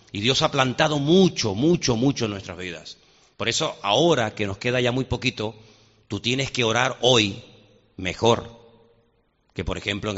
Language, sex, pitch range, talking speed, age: Spanish, male, 110-150 Hz, 170 wpm, 40-59